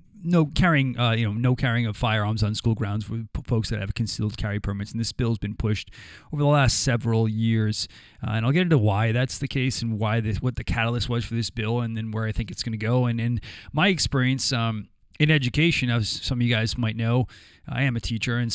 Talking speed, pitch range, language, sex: 250 wpm, 110-125 Hz, English, male